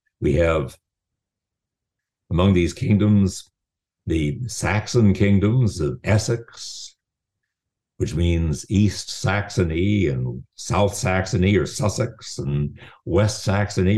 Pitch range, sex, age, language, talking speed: 90-120 Hz, male, 60-79, English, 95 wpm